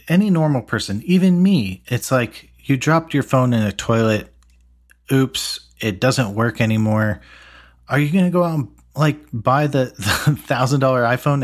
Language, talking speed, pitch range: English, 170 wpm, 100-125 Hz